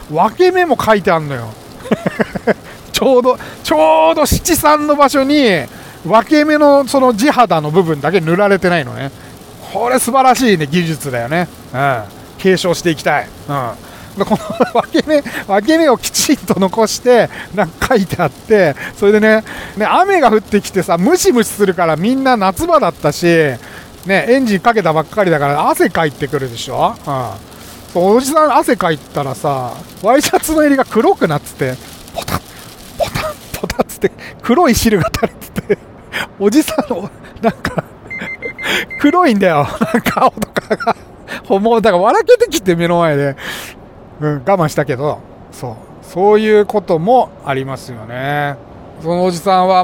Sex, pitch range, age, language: male, 150-250 Hz, 40-59, Japanese